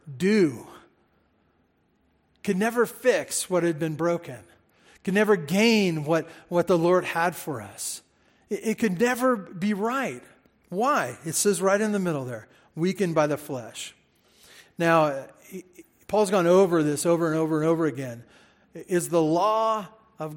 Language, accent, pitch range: English, American, 155-210 Hz